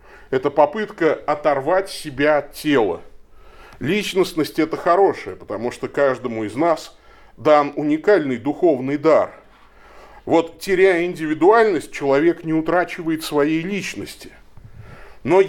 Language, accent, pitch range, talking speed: Russian, native, 145-210 Hz, 105 wpm